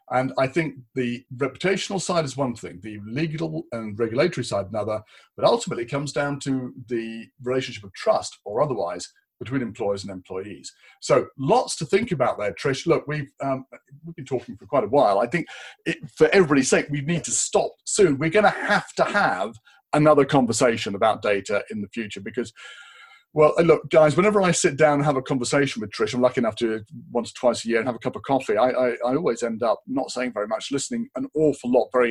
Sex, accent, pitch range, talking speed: male, British, 115-155 Hz, 215 wpm